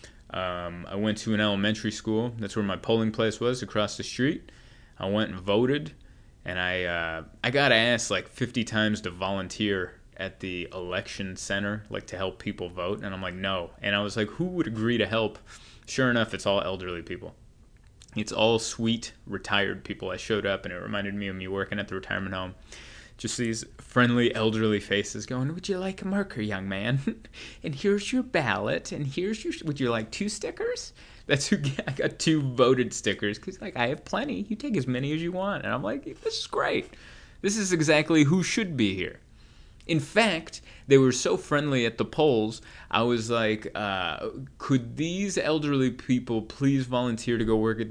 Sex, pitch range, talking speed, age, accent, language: male, 100-140 Hz, 195 wpm, 20-39, American, English